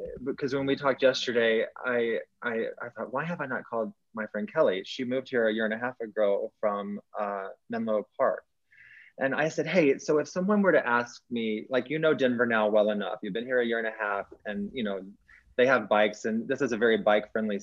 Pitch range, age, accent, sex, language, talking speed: 105-140 Hz, 20-39, American, male, English, 235 wpm